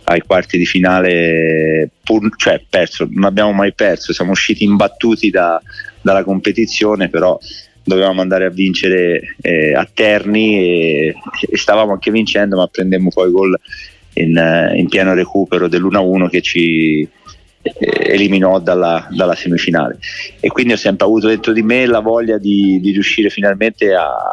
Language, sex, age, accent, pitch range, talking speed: Italian, male, 30-49, native, 90-110 Hz, 150 wpm